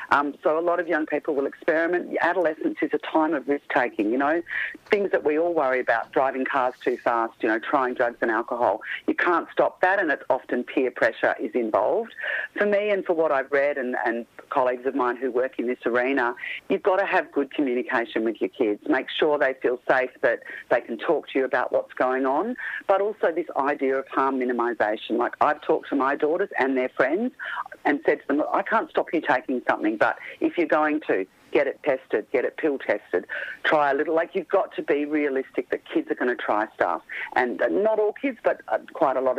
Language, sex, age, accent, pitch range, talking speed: English, female, 40-59, Australian, 130-200 Hz, 225 wpm